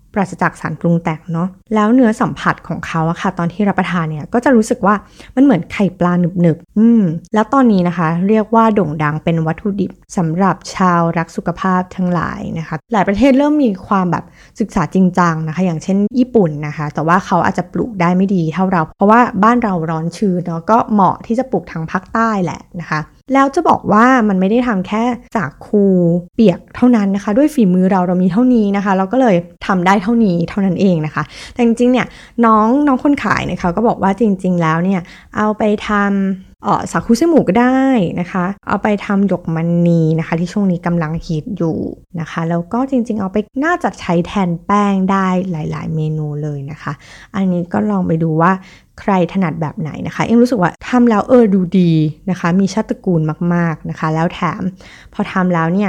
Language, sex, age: Thai, female, 20-39